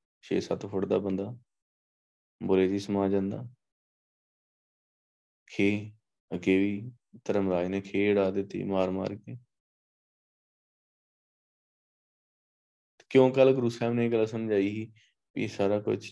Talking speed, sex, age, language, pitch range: 110 wpm, male, 20-39, Punjabi, 95-110 Hz